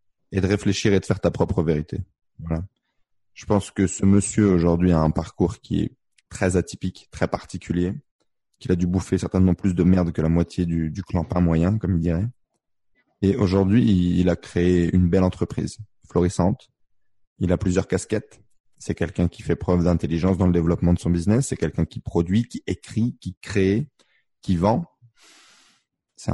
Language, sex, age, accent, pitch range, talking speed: French, male, 20-39, French, 85-100 Hz, 180 wpm